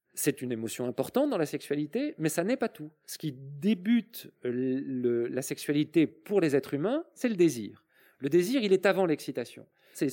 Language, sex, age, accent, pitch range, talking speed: French, male, 40-59, French, 145-215 Hz, 190 wpm